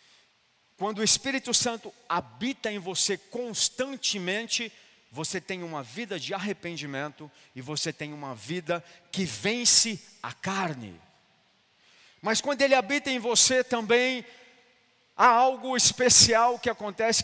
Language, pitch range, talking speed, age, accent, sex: Portuguese, 195-260 Hz, 120 wpm, 40-59, Brazilian, male